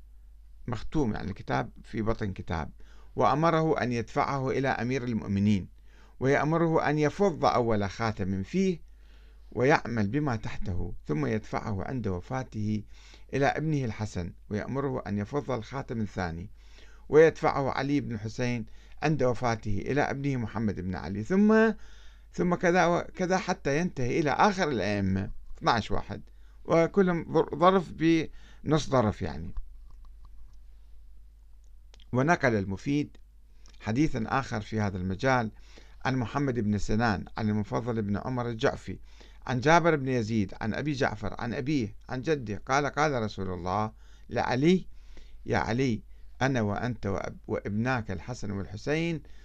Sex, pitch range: male, 100-140 Hz